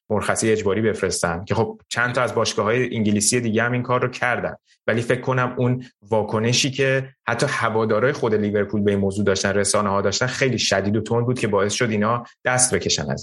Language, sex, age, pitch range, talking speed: Persian, male, 30-49, 105-125 Hz, 210 wpm